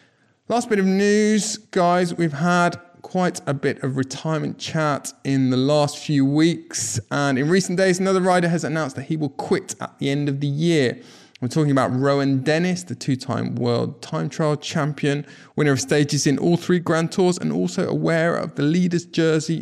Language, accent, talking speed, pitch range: English, British, 190 wpm, 125-160 Hz